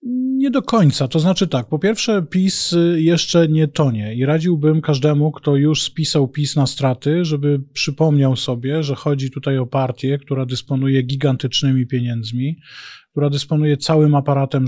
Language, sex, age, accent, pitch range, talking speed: Polish, male, 20-39, native, 135-155 Hz, 150 wpm